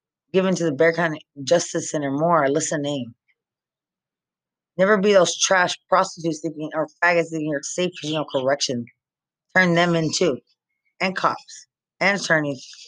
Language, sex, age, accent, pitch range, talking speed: English, female, 30-49, American, 145-180 Hz, 135 wpm